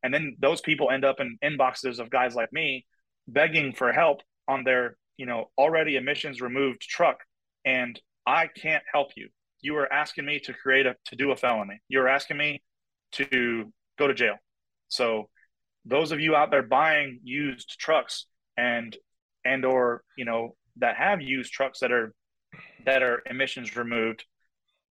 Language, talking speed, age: English, 170 wpm, 30-49